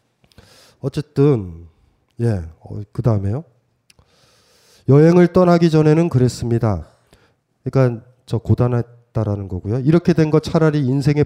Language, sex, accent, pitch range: Korean, male, native, 125-180 Hz